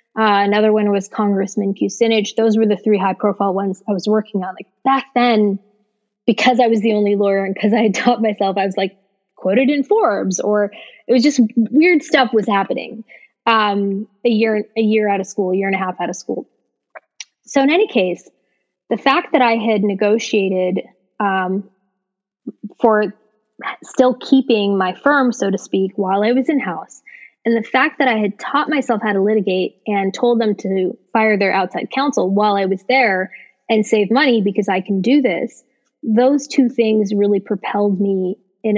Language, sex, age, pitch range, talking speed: English, female, 20-39, 195-235 Hz, 190 wpm